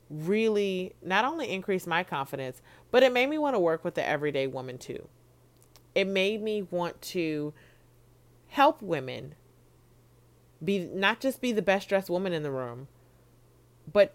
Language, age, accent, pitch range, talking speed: English, 30-49, American, 125-190 Hz, 155 wpm